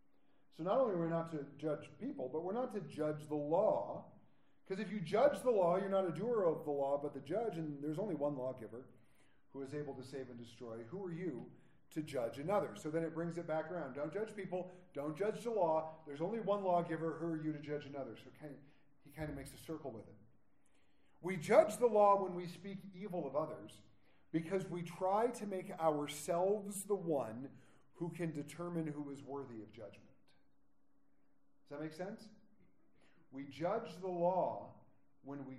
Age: 40-59